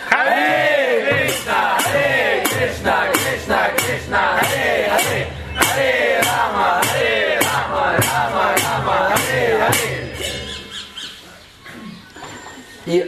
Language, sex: Russian, male